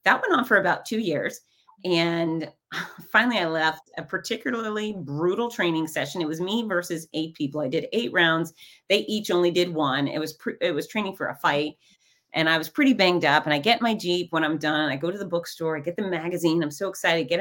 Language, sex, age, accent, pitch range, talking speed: English, female, 30-49, American, 155-220 Hz, 240 wpm